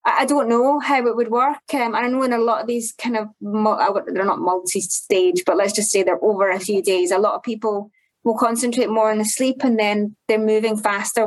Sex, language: female, English